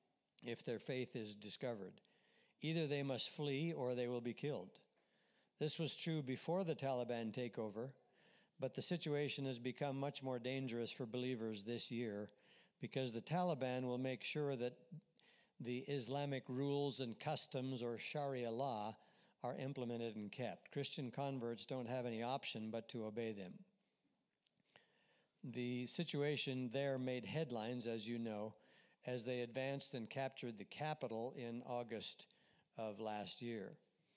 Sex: male